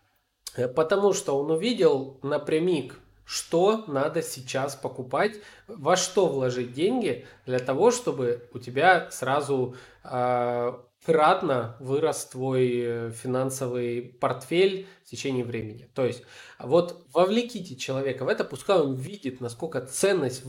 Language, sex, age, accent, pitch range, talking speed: Russian, male, 20-39, native, 130-180 Hz, 115 wpm